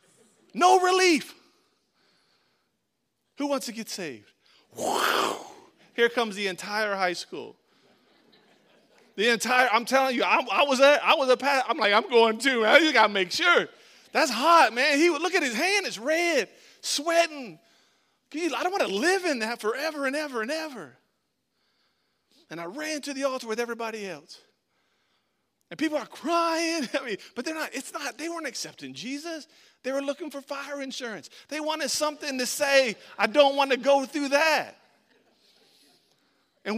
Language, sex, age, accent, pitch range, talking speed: English, male, 30-49, American, 210-295 Hz, 170 wpm